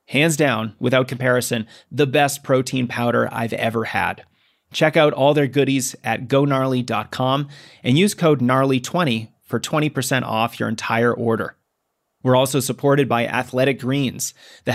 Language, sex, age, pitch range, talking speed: English, male, 30-49, 120-140 Hz, 140 wpm